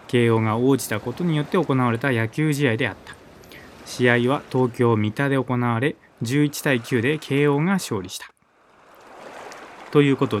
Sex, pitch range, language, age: male, 115-150 Hz, Japanese, 20-39